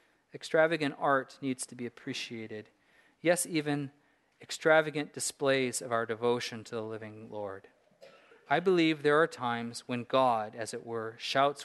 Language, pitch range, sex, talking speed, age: English, 120-145 Hz, male, 145 wpm, 40-59